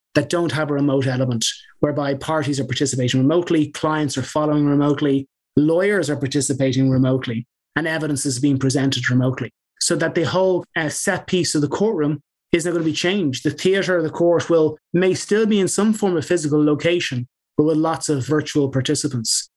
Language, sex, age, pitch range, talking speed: English, male, 30-49, 150-175 Hz, 190 wpm